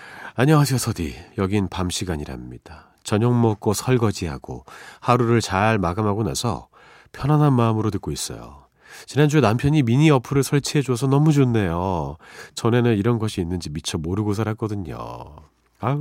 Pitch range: 90-130 Hz